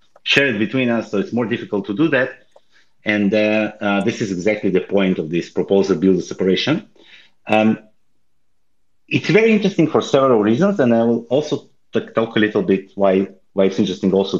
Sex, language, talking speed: male, English, 190 wpm